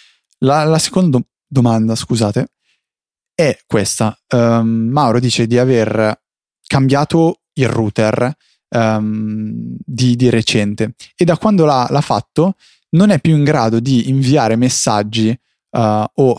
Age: 20-39